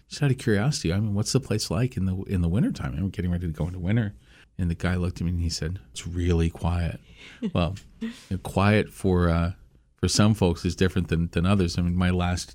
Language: English